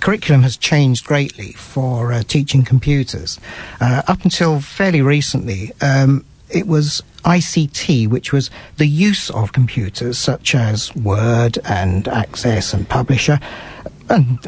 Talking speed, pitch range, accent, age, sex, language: 130 wpm, 125-160 Hz, British, 50-69, male, English